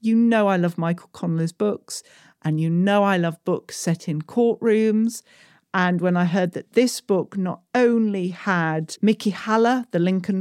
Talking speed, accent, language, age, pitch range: 175 wpm, British, English, 40-59, 165-215 Hz